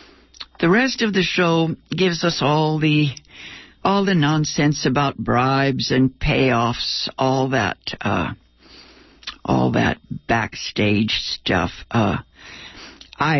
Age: 60-79